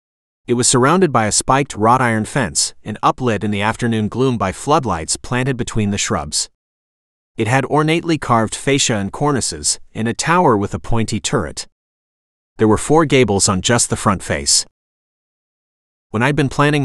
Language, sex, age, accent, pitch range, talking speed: English, male, 30-49, American, 95-130 Hz, 170 wpm